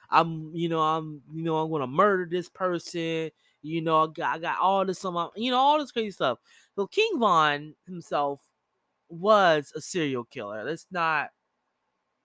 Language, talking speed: English, 175 wpm